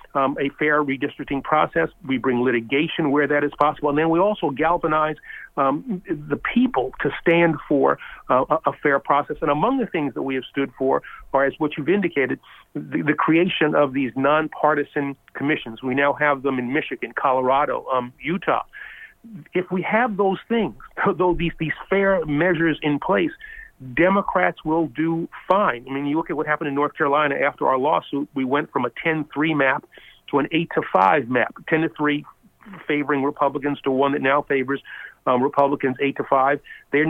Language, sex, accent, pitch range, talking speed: English, male, American, 140-170 Hz, 175 wpm